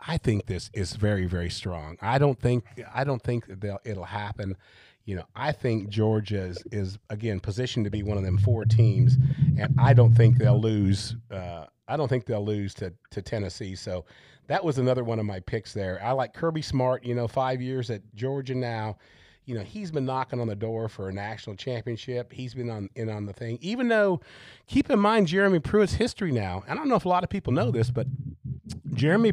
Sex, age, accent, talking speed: male, 40-59, American, 220 wpm